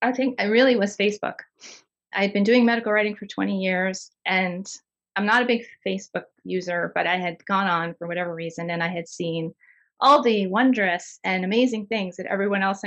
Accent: American